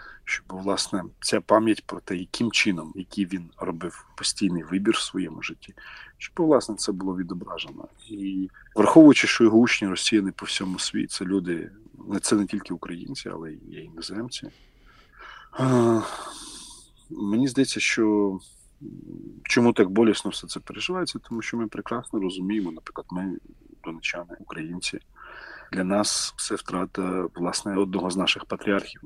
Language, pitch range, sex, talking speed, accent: Ukrainian, 95-110 Hz, male, 140 wpm, native